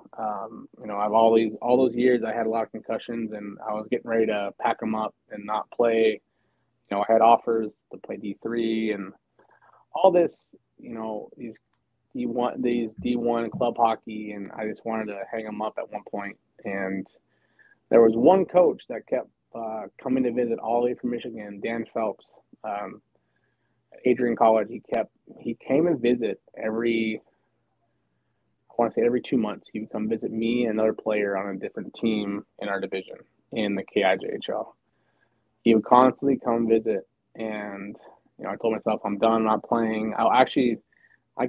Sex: male